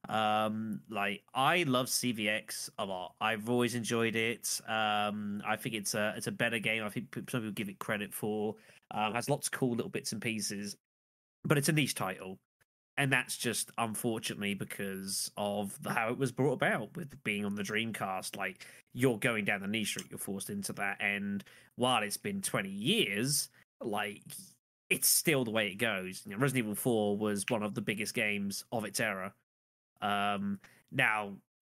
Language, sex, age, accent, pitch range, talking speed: English, male, 20-39, British, 105-130 Hz, 180 wpm